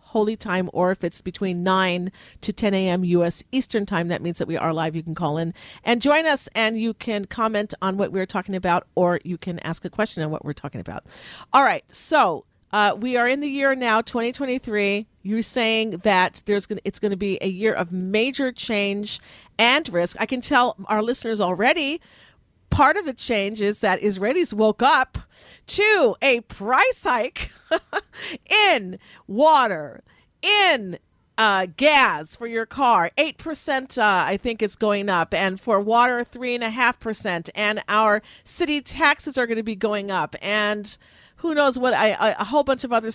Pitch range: 190-255 Hz